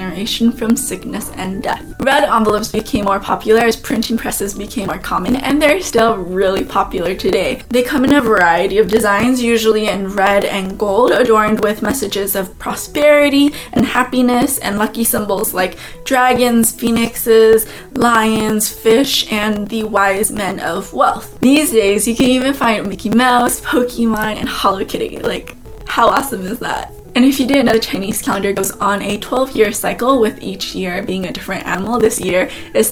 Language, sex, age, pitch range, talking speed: English, female, 20-39, 210-265 Hz, 170 wpm